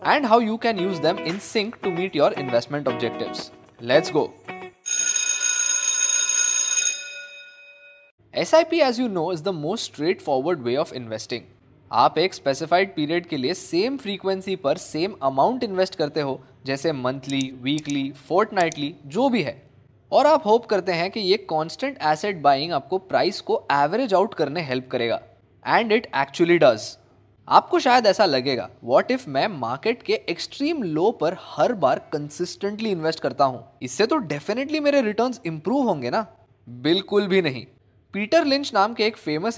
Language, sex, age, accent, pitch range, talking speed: Hindi, male, 20-39, native, 140-225 Hz, 165 wpm